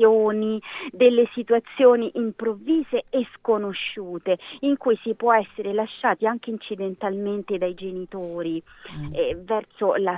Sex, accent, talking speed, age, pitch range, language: female, native, 105 wpm, 30-49, 185-240 Hz, Italian